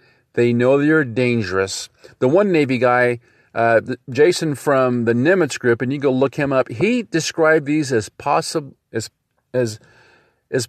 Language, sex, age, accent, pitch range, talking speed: English, male, 40-59, American, 115-150 Hz, 155 wpm